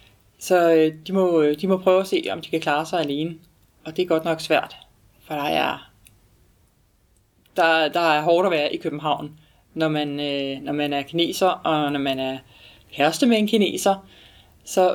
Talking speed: 170 wpm